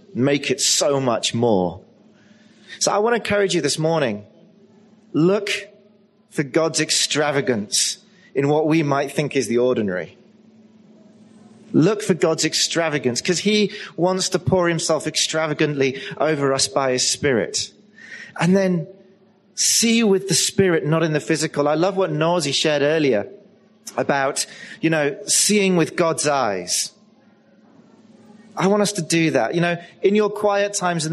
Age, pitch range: 30-49, 160-205 Hz